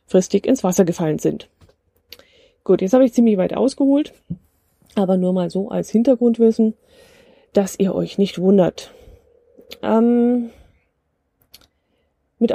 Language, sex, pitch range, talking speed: German, female, 200-245 Hz, 115 wpm